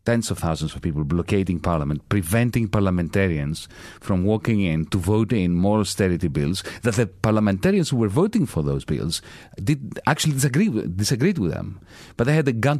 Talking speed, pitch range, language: 185 wpm, 85-115 Hz, English